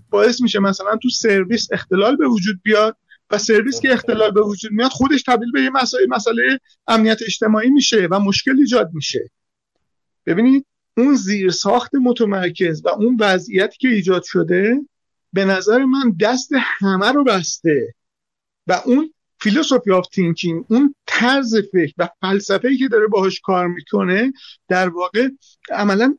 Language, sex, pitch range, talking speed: Persian, male, 190-245 Hz, 150 wpm